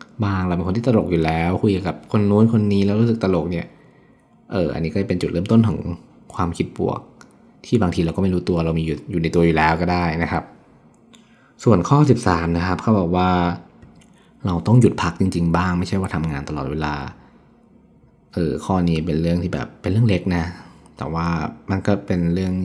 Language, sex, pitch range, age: Thai, male, 80-95 Hz, 20-39